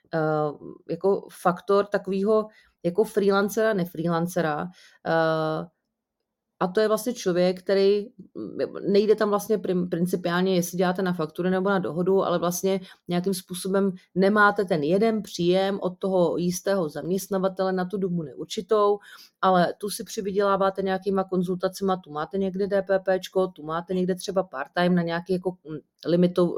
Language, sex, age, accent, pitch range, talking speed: Czech, female, 30-49, native, 180-200 Hz, 140 wpm